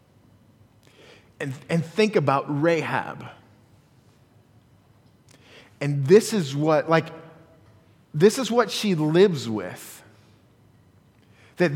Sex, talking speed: male, 85 wpm